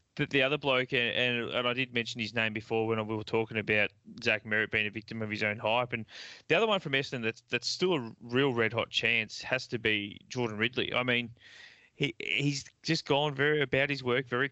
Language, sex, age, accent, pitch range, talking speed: English, male, 20-39, Australian, 110-135 Hz, 225 wpm